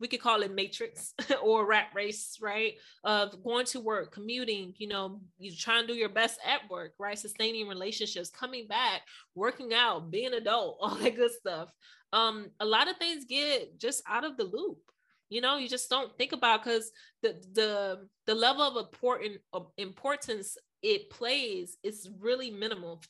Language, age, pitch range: English, 20-39, 205-255 Hz